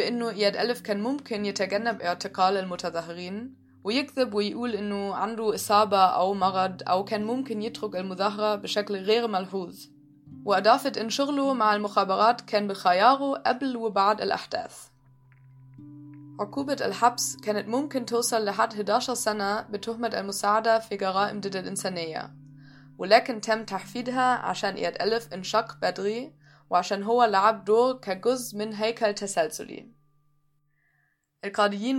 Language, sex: English, female